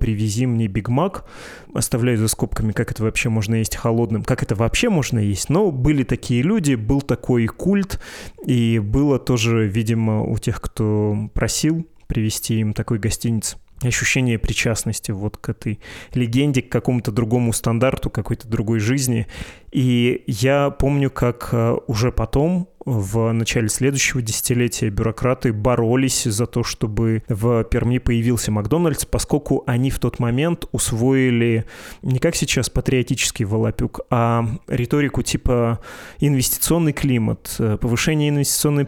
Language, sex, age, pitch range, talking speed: Russian, male, 20-39, 115-135 Hz, 135 wpm